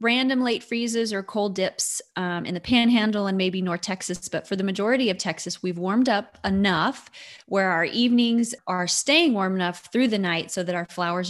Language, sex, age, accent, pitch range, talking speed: English, female, 20-39, American, 180-230 Hz, 200 wpm